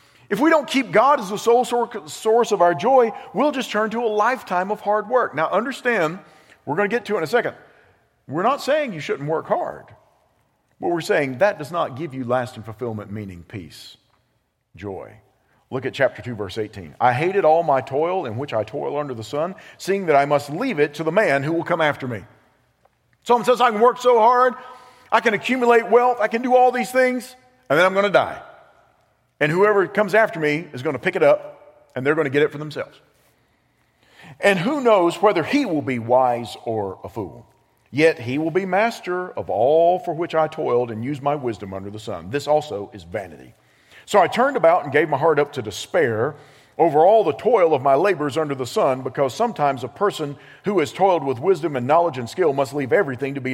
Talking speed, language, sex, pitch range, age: 220 wpm, English, male, 140-225 Hz, 50-69